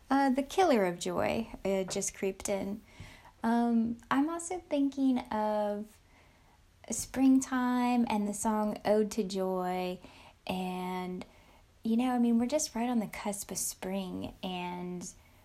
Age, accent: 10-29, American